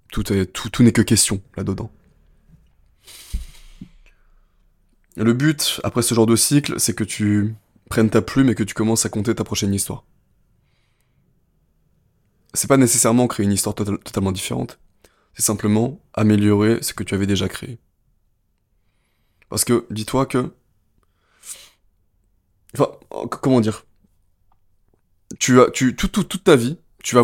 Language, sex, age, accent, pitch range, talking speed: French, male, 20-39, French, 105-125 Hz, 150 wpm